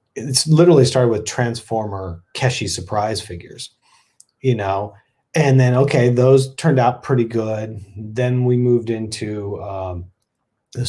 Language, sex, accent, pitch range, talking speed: English, male, American, 110-135 Hz, 130 wpm